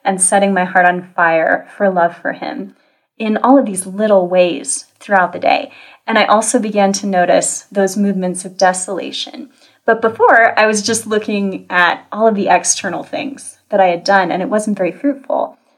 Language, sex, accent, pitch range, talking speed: English, female, American, 185-235 Hz, 190 wpm